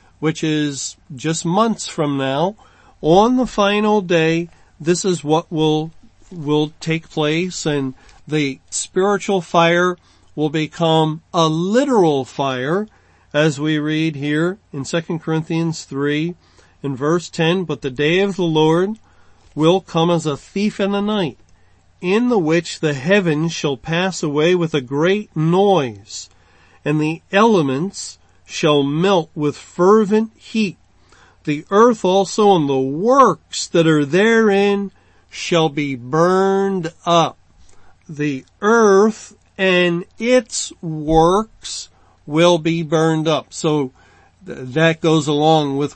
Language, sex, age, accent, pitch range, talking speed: English, male, 40-59, American, 150-190 Hz, 130 wpm